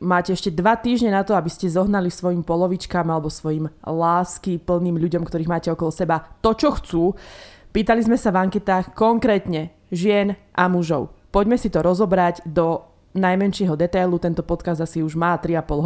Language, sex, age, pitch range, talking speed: Slovak, female, 20-39, 165-200 Hz, 170 wpm